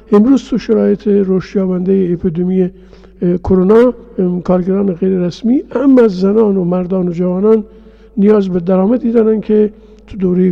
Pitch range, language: 180-220 Hz, Persian